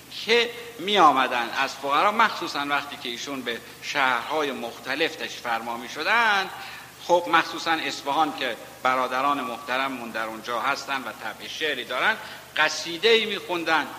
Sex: male